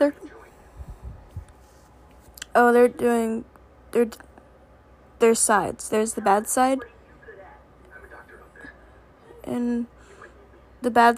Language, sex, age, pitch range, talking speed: English, female, 10-29, 200-270 Hz, 70 wpm